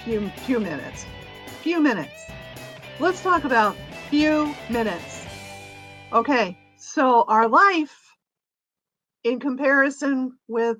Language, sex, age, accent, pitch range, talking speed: English, female, 50-69, American, 225-300 Hz, 95 wpm